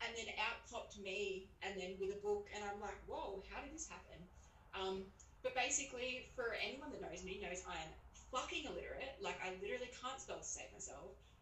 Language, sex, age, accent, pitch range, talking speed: English, female, 20-39, Australian, 170-210 Hz, 205 wpm